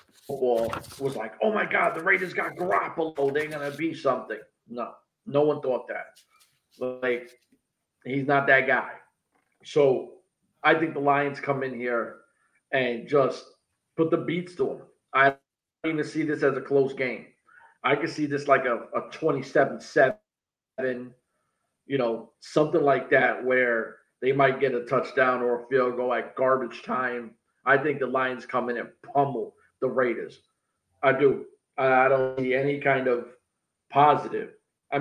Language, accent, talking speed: English, American, 165 wpm